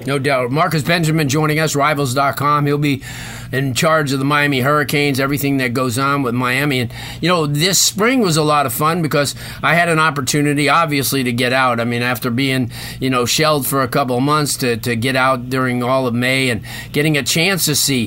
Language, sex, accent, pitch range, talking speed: English, male, American, 125-150 Hz, 220 wpm